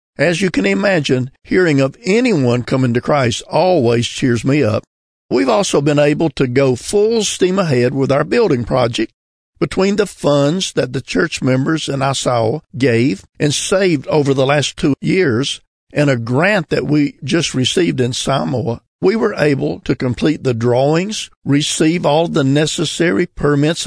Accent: American